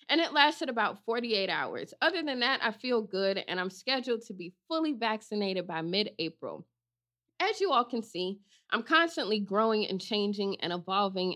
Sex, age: female, 20-39